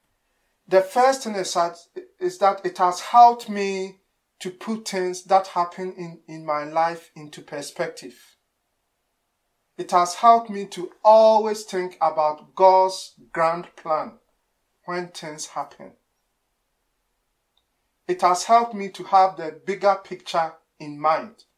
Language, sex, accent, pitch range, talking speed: English, male, Nigerian, 165-200 Hz, 125 wpm